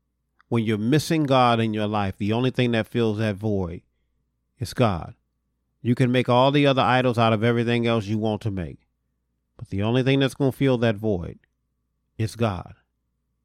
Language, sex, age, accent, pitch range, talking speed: English, male, 40-59, American, 75-125 Hz, 190 wpm